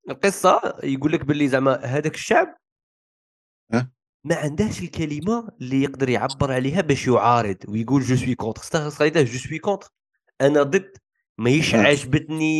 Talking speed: 135 wpm